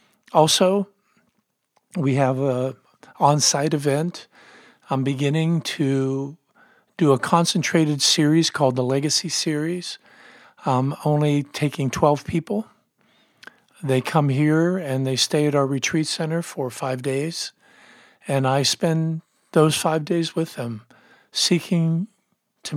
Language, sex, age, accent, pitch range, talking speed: English, male, 50-69, American, 135-175 Hz, 120 wpm